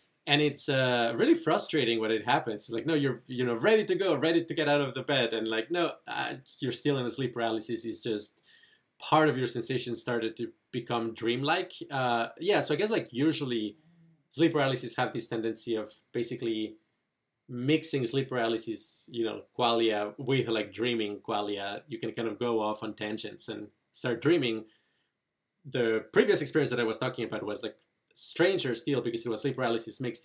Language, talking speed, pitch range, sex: English, 190 wpm, 115-150 Hz, male